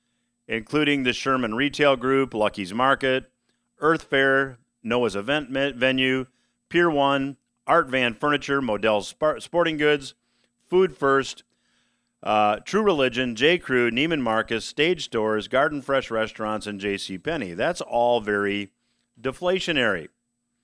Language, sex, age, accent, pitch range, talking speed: English, male, 40-59, American, 120-155 Hz, 120 wpm